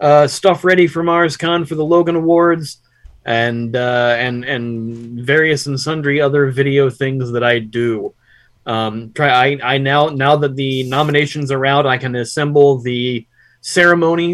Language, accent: English, American